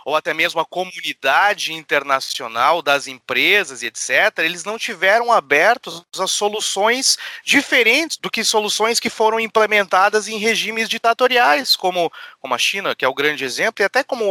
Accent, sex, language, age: Brazilian, male, Portuguese, 30-49